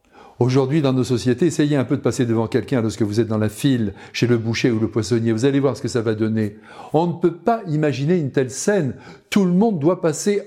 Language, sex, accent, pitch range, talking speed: French, male, French, 120-185 Hz, 250 wpm